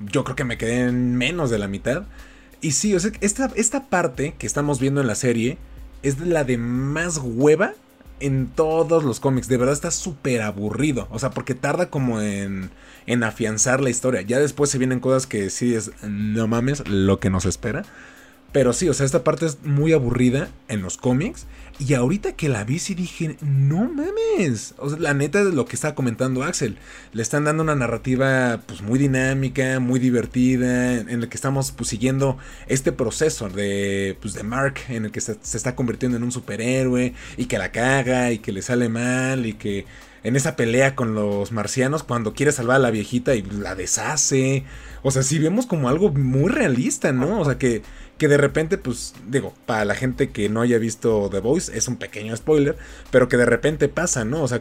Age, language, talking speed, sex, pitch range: 30-49, Spanish, 205 wpm, male, 115-145 Hz